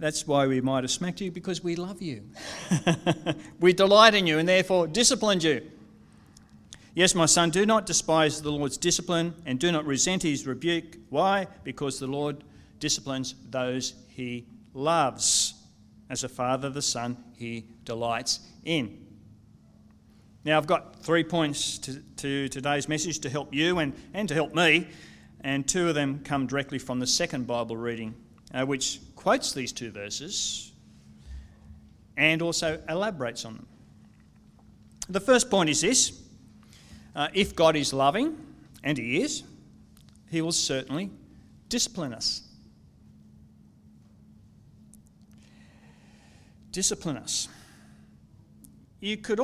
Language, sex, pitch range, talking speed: English, male, 120-170 Hz, 135 wpm